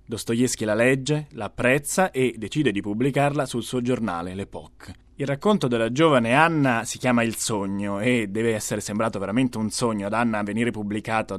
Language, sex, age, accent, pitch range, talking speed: Italian, male, 20-39, native, 100-130 Hz, 175 wpm